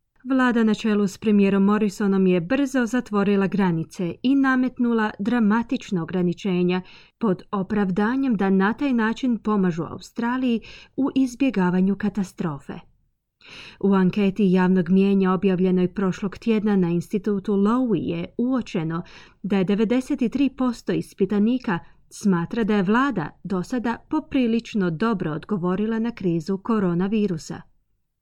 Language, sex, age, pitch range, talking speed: Croatian, female, 30-49, 185-230 Hz, 115 wpm